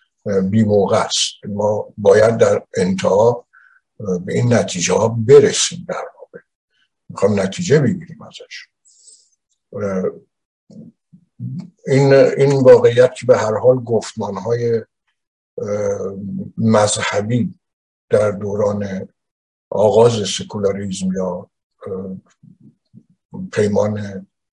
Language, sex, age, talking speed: Persian, male, 60-79, 75 wpm